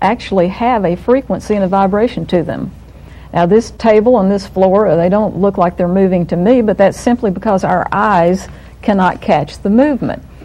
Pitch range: 180-225 Hz